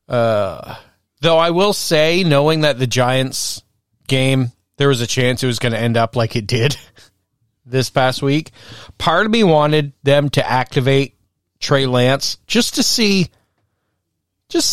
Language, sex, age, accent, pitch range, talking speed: English, male, 40-59, American, 105-135 Hz, 160 wpm